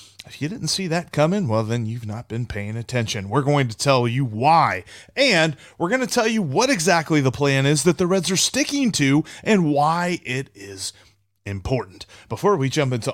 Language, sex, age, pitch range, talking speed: English, male, 30-49, 110-165 Hz, 205 wpm